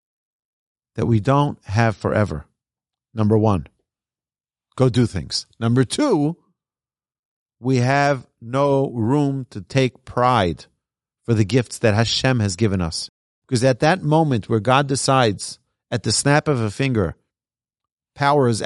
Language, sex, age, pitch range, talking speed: English, male, 40-59, 115-160 Hz, 135 wpm